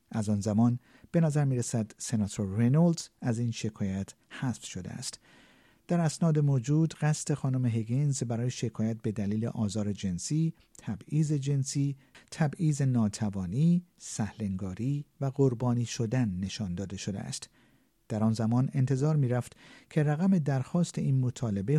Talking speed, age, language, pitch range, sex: 130 wpm, 50-69, Persian, 105-150 Hz, male